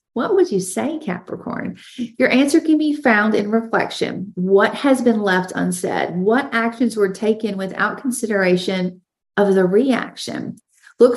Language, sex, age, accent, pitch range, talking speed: English, female, 40-59, American, 185-235 Hz, 145 wpm